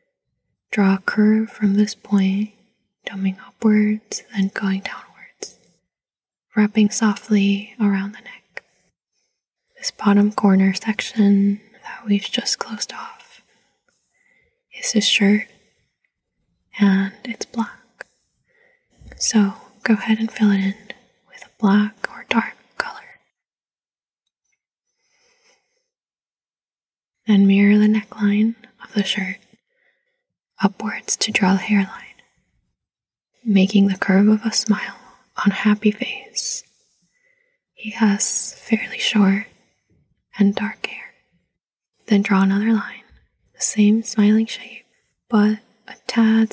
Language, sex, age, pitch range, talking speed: English, female, 20-39, 200-245 Hz, 110 wpm